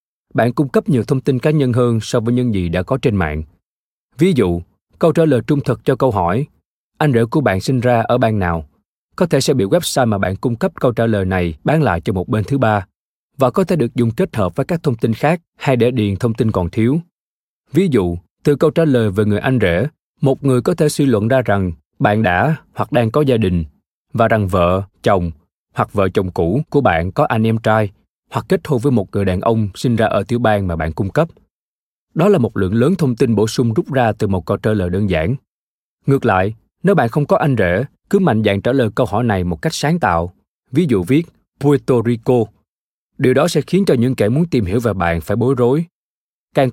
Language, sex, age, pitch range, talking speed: Vietnamese, male, 20-39, 100-145 Hz, 245 wpm